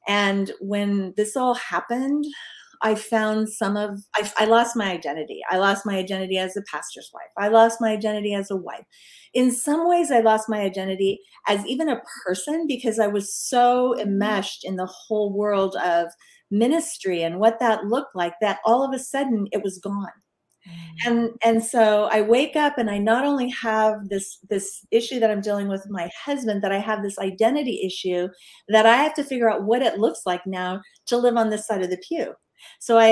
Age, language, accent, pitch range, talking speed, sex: 40-59, English, American, 200-250 Hz, 200 wpm, female